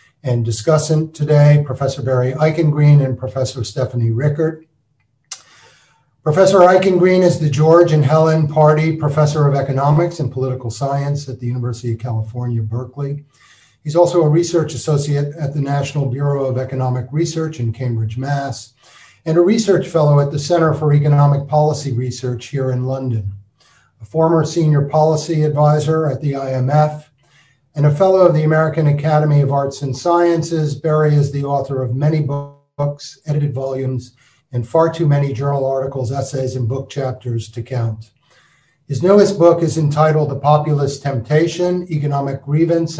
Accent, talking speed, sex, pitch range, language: American, 150 wpm, male, 130-155 Hz, English